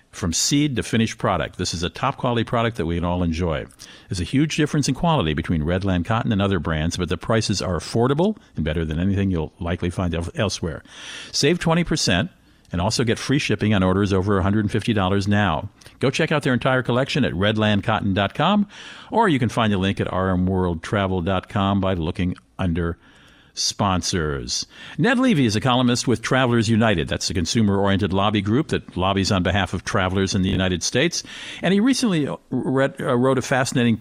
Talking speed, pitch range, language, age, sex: 180 wpm, 95-125 Hz, English, 50-69, male